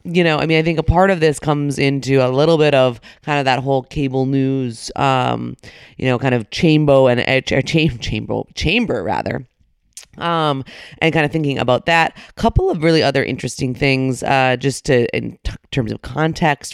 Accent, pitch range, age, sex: American, 130-155 Hz, 30-49, female